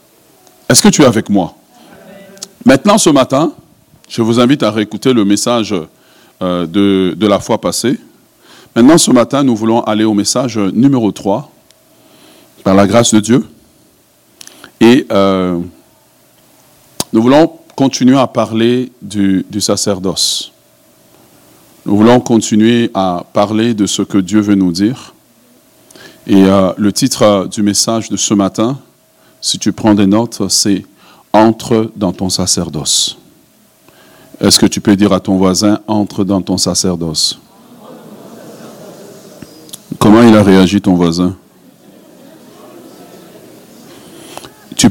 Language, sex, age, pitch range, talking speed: French, male, 50-69, 95-125 Hz, 130 wpm